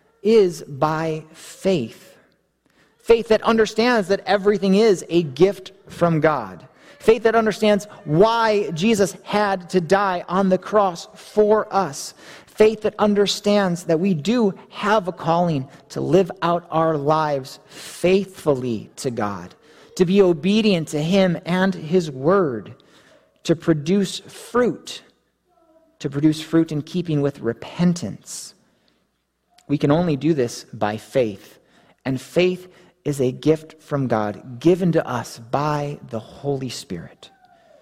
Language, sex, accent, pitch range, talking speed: English, male, American, 145-195 Hz, 130 wpm